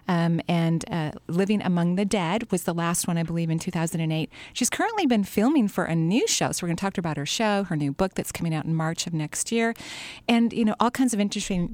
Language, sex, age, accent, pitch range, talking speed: English, female, 40-59, American, 170-210 Hz, 260 wpm